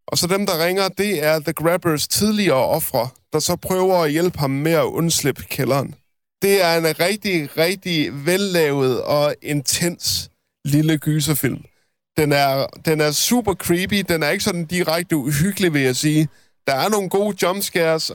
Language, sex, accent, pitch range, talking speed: Danish, male, native, 135-175 Hz, 170 wpm